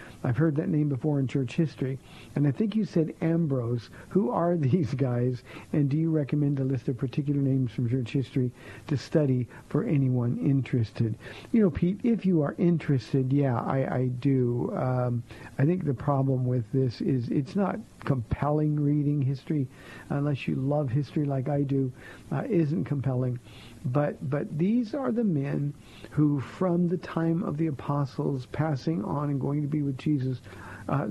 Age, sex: 50-69, male